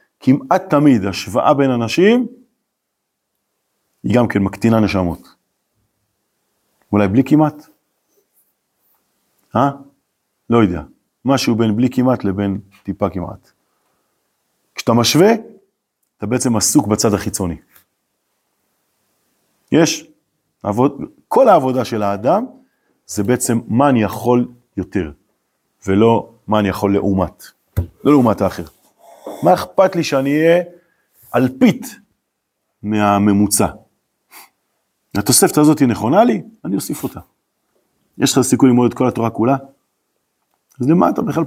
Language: Hebrew